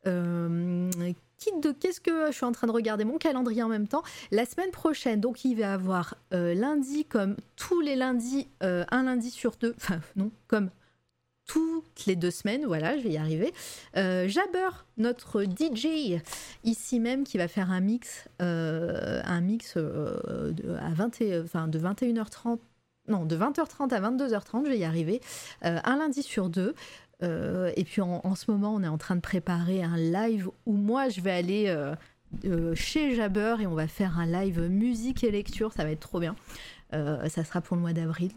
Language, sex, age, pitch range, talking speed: French, female, 30-49, 170-240 Hz, 195 wpm